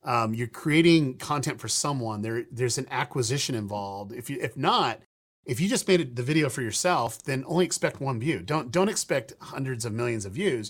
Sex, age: male, 40-59